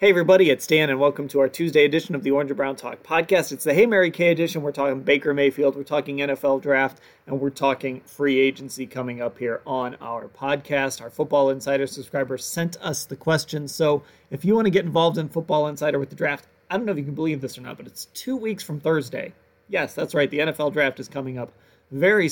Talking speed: 240 wpm